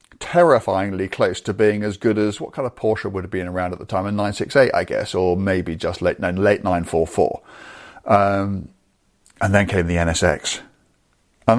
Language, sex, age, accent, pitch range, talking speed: English, male, 40-59, British, 100-120 Hz, 185 wpm